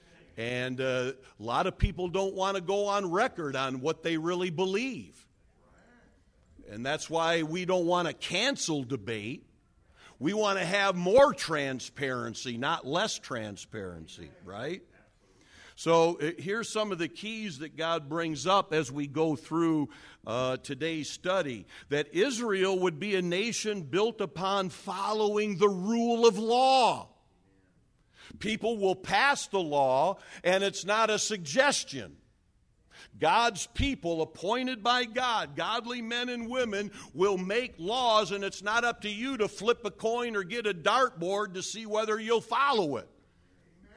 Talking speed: 145 wpm